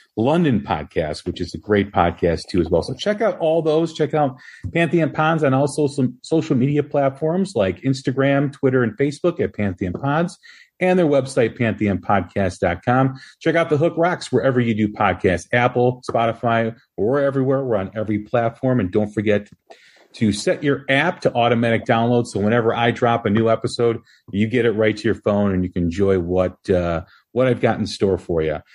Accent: American